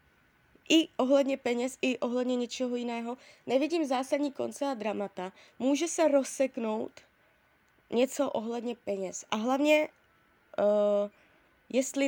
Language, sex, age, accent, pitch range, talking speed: Czech, female, 20-39, native, 215-285 Hz, 105 wpm